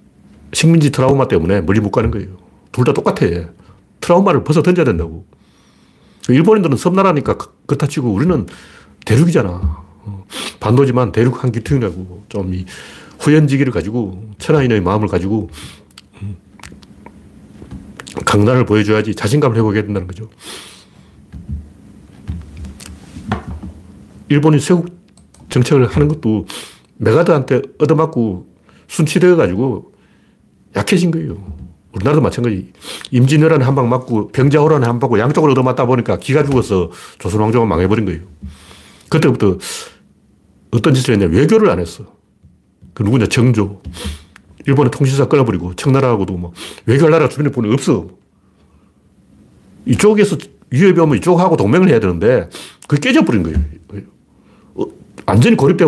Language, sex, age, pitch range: Korean, male, 40-59, 95-145 Hz